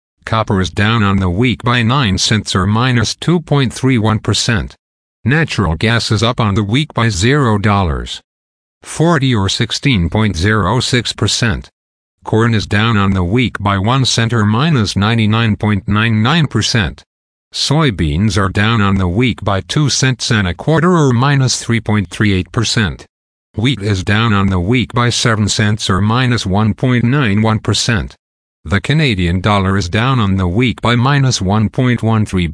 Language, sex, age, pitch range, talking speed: English, male, 50-69, 95-120 Hz, 135 wpm